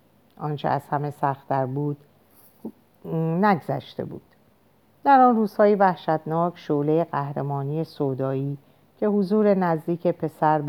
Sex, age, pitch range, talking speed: female, 50-69, 135-175 Hz, 100 wpm